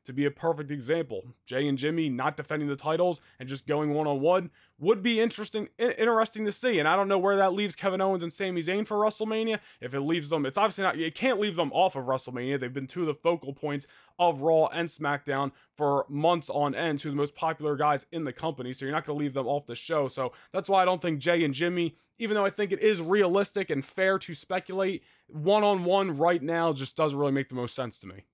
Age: 20-39